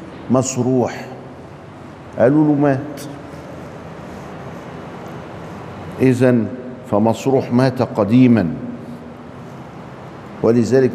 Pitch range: 115-135 Hz